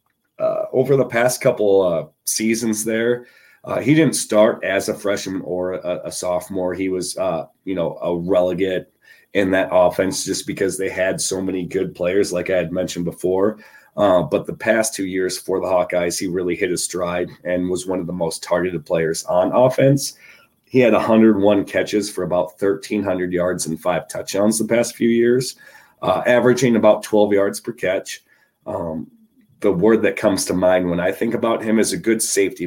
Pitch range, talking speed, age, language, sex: 90-120 Hz, 190 wpm, 30-49, English, male